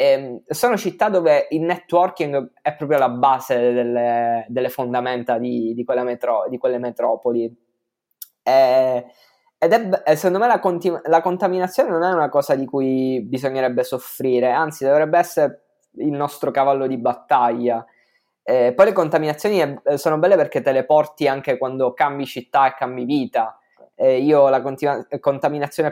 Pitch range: 125-155 Hz